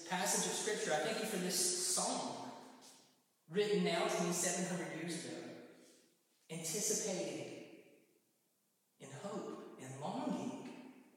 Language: English